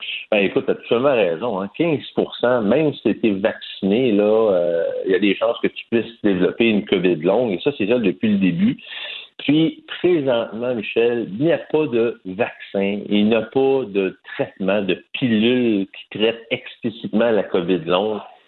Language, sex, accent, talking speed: French, male, French, 185 wpm